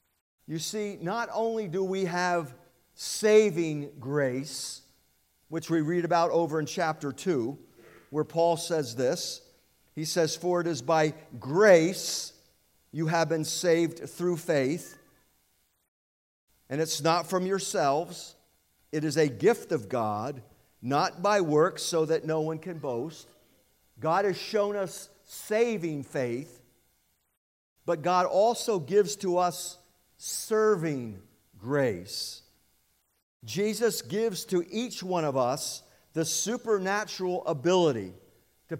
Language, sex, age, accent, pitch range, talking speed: English, male, 50-69, American, 125-185 Hz, 120 wpm